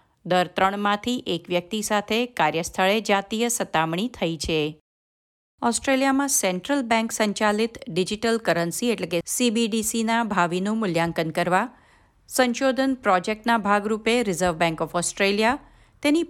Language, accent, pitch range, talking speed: Gujarati, native, 175-235 Hz, 110 wpm